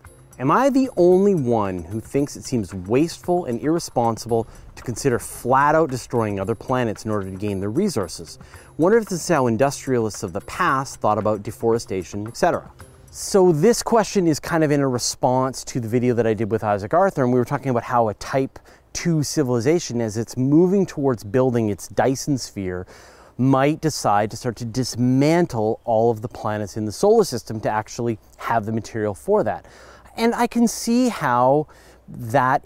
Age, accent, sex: 30-49, American, male